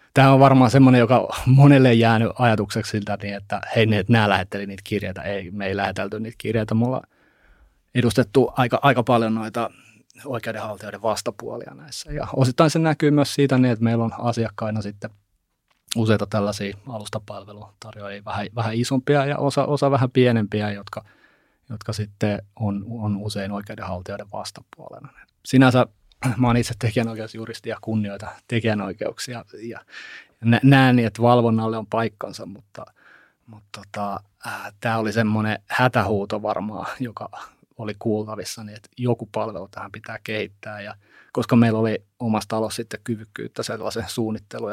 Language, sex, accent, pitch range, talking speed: Finnish, male, native, 105-120 Hz, 145 wpm